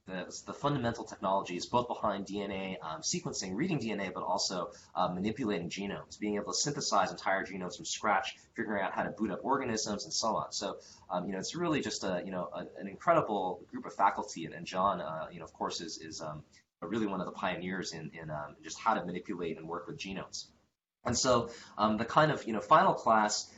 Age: 20-39